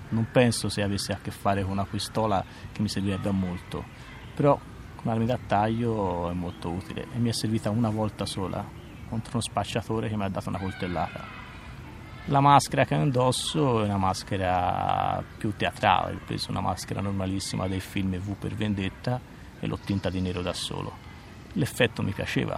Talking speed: 180 wpm